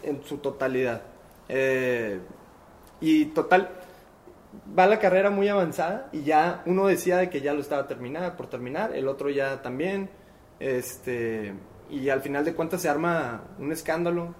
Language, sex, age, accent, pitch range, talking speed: Spanish, male, 20-39, Mexican, 125-155 Hz, 150 wpm